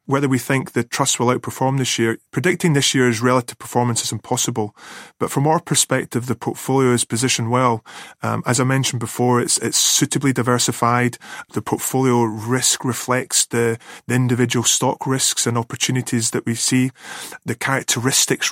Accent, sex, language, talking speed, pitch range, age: British, male, English, 160 wpm, 120-130 Hz, 30-49